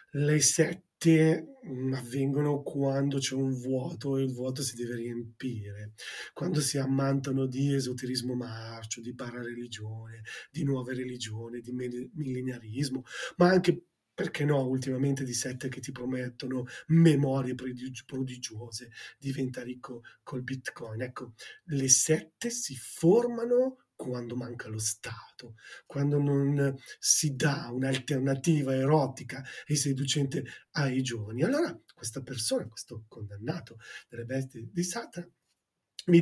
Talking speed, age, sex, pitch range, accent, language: 120 wpm, 30-49, male, 120-145 Hz, native, Italian